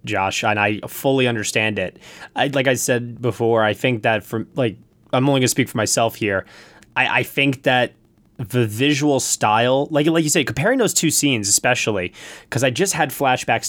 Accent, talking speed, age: American, 195 wpm, 20-39